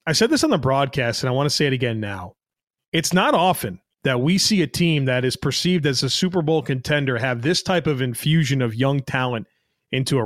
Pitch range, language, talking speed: 130-165 Hz, English, 235 wpm